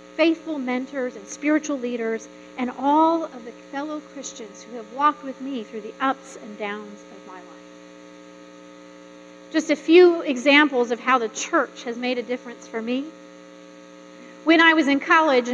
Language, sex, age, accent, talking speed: English, female, 40-59, American, 165 wpm